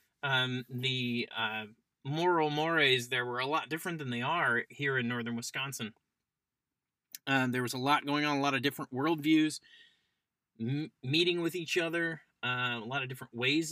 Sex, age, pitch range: male, 30-49, 125-155 Hz